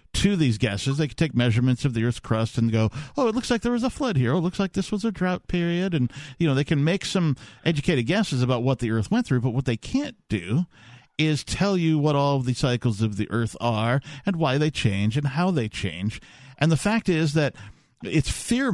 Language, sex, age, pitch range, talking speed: English, male, 50-69, 120-175 Hz, 245 wpm